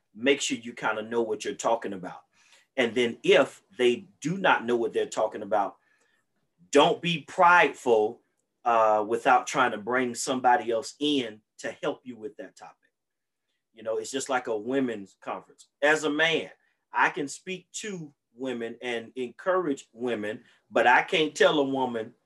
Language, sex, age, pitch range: English, male, 30-49, 115-140 Hz